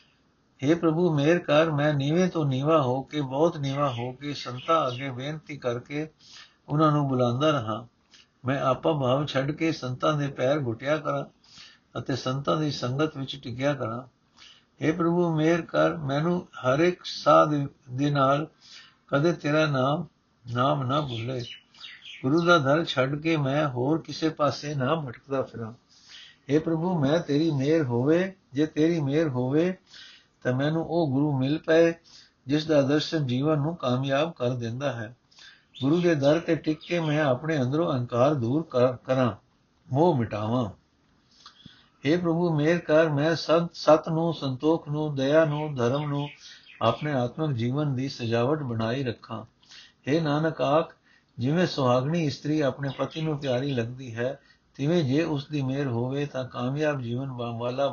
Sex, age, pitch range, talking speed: male, 60-79, 130-155 Hz, 150 wpm